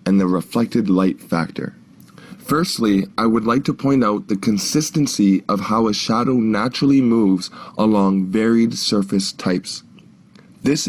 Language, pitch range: English, 100-115 Hz